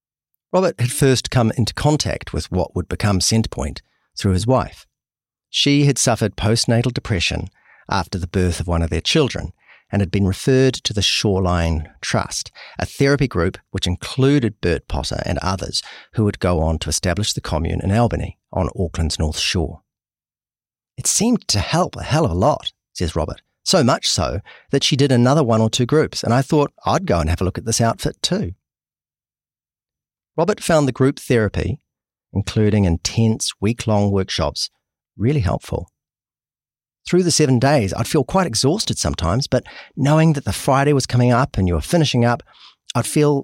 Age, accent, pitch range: 40-59, Australian, 95-135 Hz